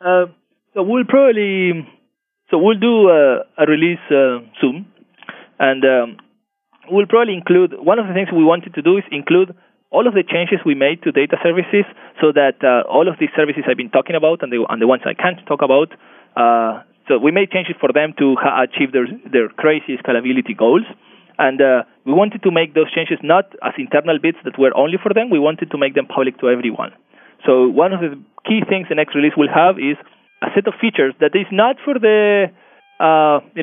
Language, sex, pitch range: English, male, 140-200 Hz